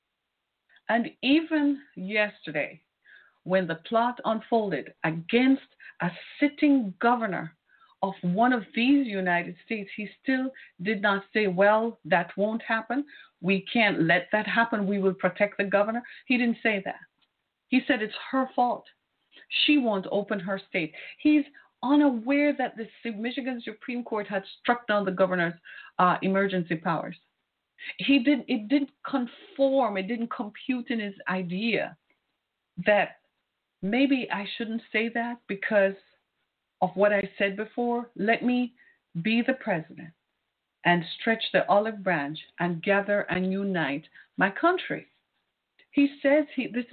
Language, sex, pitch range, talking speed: English, female, 195-260 Hz, 140 wpm